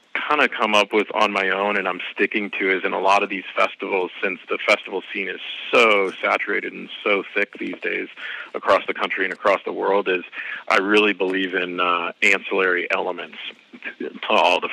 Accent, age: American, 40-59